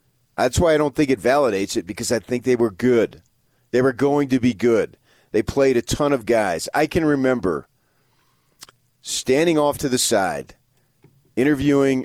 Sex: male